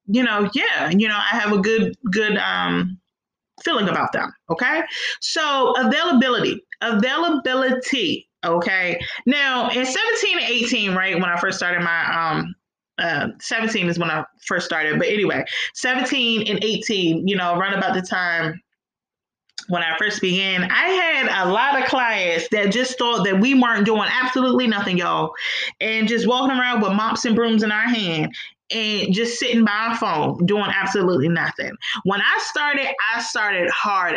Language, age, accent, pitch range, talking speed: English, 20-39, American, 185-245 Hz, 165 wpm